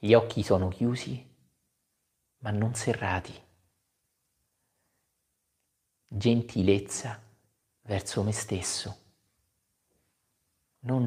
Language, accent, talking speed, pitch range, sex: Italian, native, 65 wpm, 95-110 Hz, male